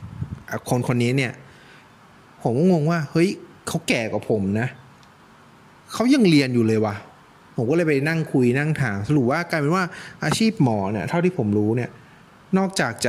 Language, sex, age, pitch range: Thai, male, 20-39, 115-155 Hz